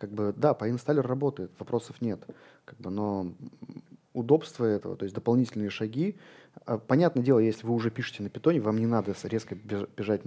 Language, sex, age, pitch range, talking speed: Russian, male, 20-39, 100-120 Hz, 175 wpm